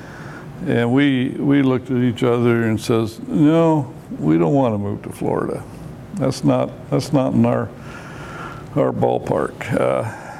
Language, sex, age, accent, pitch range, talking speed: English, male, 60-79, American, 110-140 Hz, 150 wpm